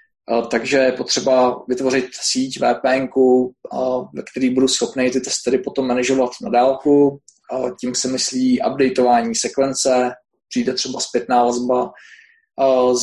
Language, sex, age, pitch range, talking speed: Czech, male, 20-39, 125-135 Hz, 125 wpm